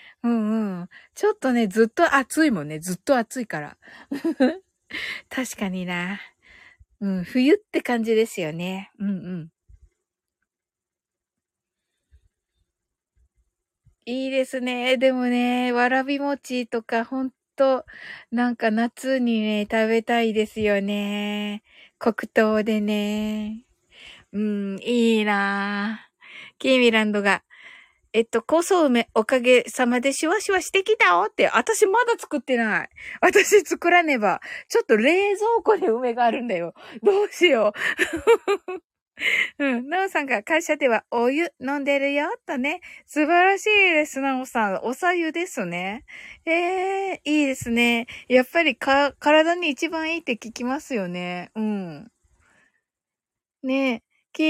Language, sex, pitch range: Japanese, female, 215-315 Hz